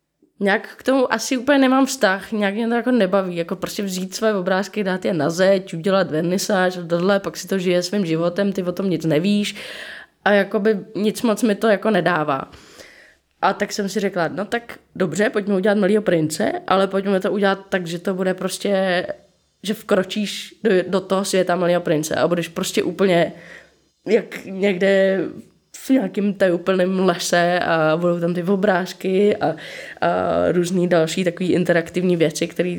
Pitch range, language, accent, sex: 170-200 Hz, Czech, native, female